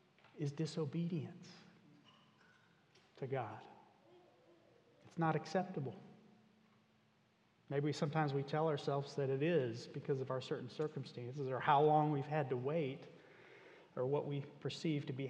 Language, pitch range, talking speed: English, 145-180 Hz, 130 wpm